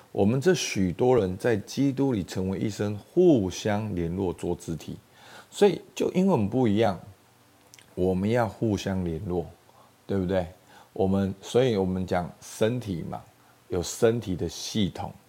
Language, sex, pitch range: Chinese, male, 90-115 Hz